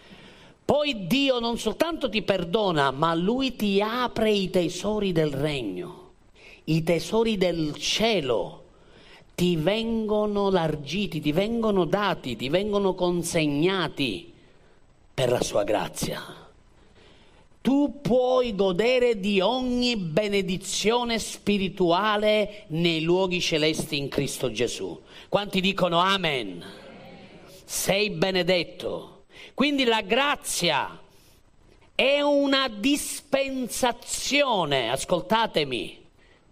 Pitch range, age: 185-250 Hz, 40-59